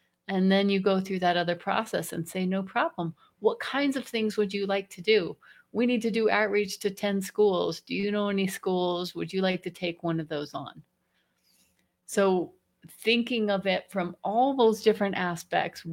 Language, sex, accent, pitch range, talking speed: English, female, American, 180-240 Hz, 195 wpm